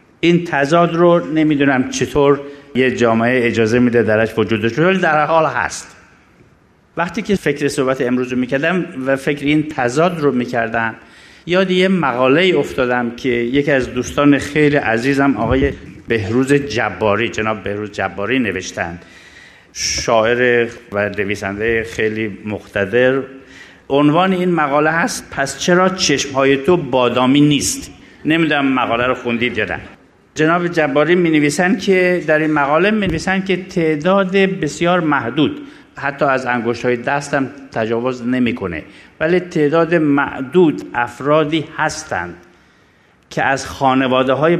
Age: 50-69